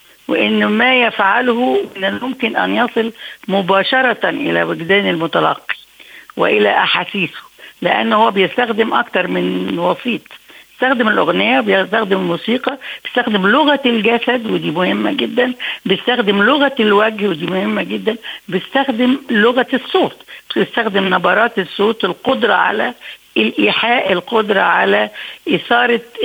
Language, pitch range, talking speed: Arabic, 195-255 Hz, 105 wpm